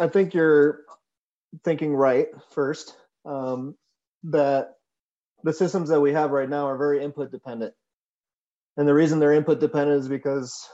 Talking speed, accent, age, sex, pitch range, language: 150 wpm, American, 30-49, male, 135-150 Hz, English